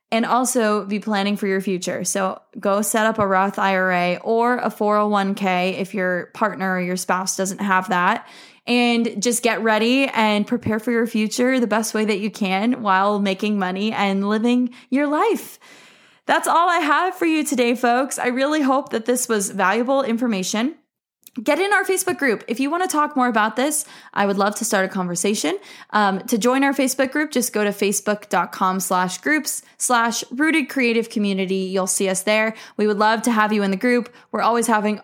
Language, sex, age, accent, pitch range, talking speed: English, female, 20-39, American, 195-250 Hz, 200 wpm